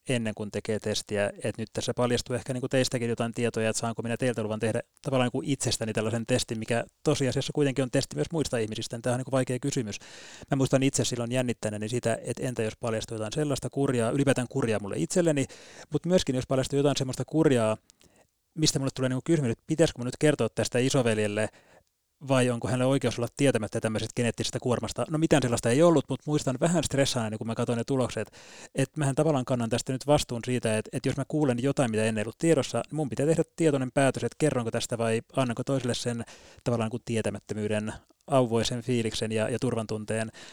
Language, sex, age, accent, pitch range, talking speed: Finnish, male, 30-49, native, 110-135 Hz, 200 wpm